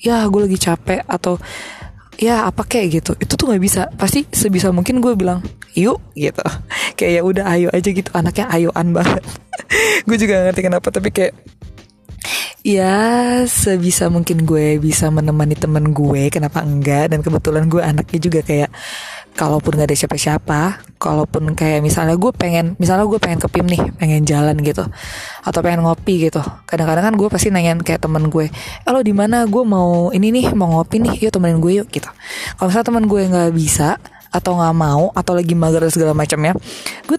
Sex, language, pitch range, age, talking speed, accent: female, Indonesian, 155-195 Hz, 20-39, 180 wpm, native